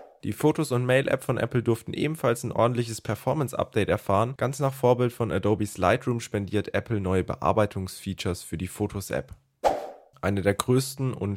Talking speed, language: 155 wpm, German